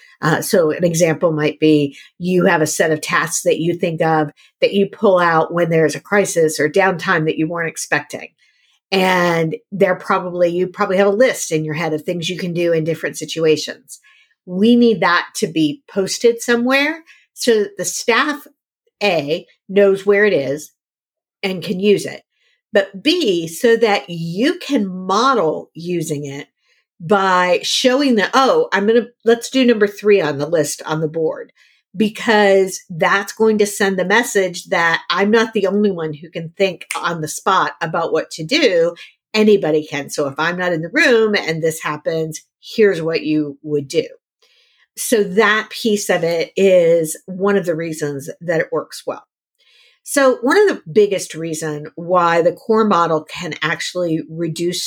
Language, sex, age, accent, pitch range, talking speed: English, female, 50-69, American, 160-215 Hz, 175 wpm